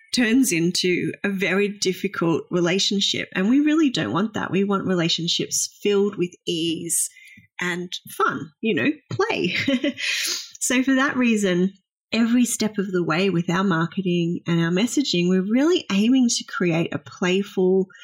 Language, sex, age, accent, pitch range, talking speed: English, female, 30-49, Australian, 180-230 Hz, 150 wpm